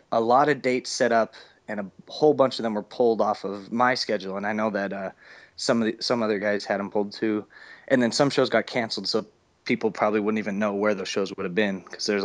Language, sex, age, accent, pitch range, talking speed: English, male, 20-39, American, 100-115 Hz, 260 wpm